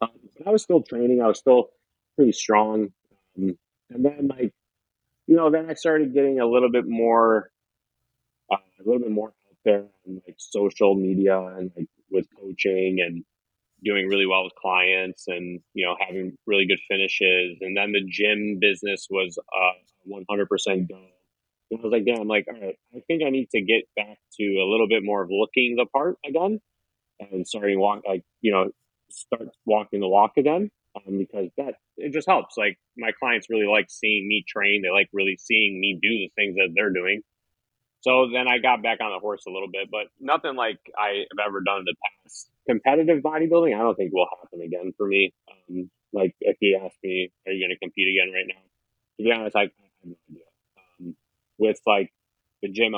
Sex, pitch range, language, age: male, 95-120 Hz, English, 30-49